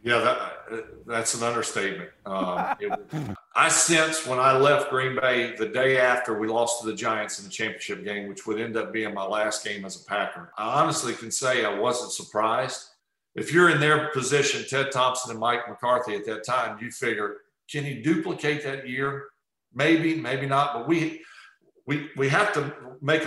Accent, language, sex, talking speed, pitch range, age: American, English, male, 190 wpm, 120-155 Hz, 50-69